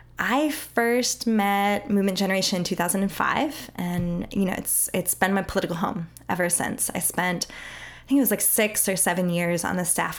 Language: English